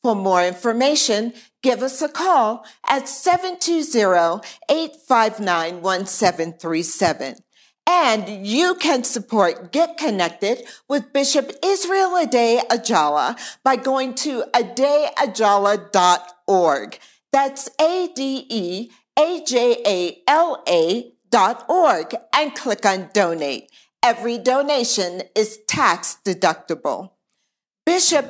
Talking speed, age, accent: 90 wpm, 50-69, American